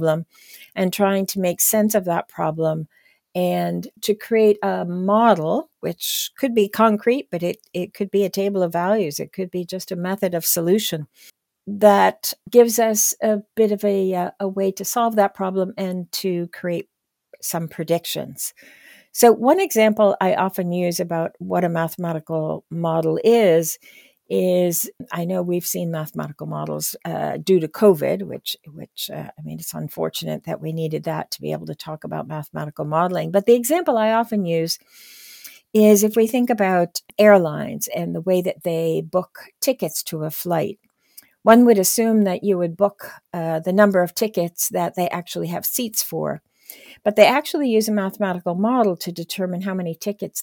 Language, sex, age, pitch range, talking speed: English, female, 60-79, 165-215 Hz, 175 wpm